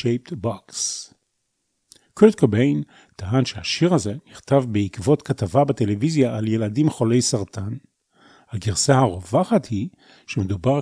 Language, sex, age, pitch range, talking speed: Hebrew, male, 40-59, 110-140 Hz, 95 wpm